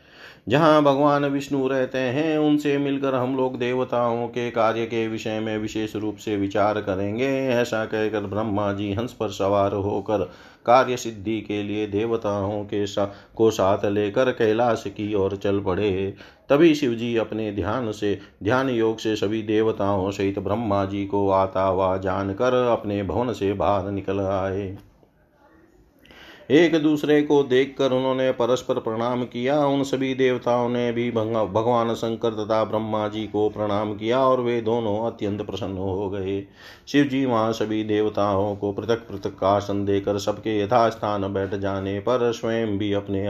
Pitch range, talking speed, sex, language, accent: 100-120 Hz, 160 wpm, male, Hindi, native